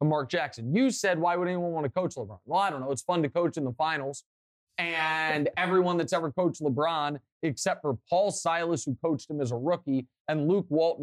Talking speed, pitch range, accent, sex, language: 225 wpm, 150-195 Hz, American, male, English